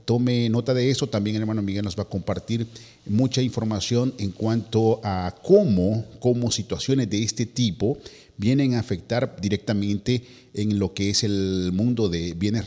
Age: 50-69